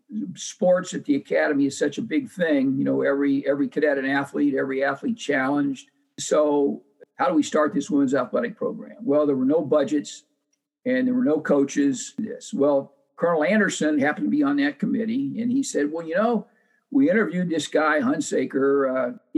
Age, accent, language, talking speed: 50-69, American, English, 185 wpm